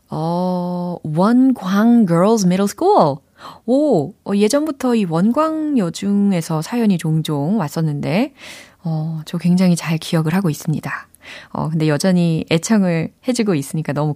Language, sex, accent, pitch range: Korean, female, native, 160-225 Hz